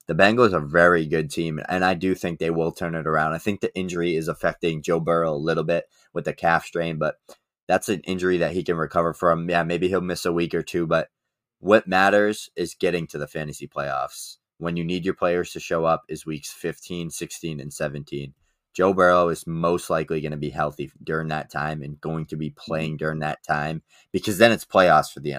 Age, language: 20-39, English